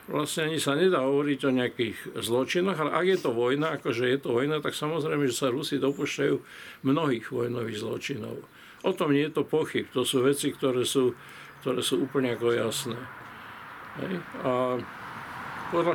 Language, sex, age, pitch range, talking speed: Slovak, male, 50-69, 125-145 Hz, 160 wpm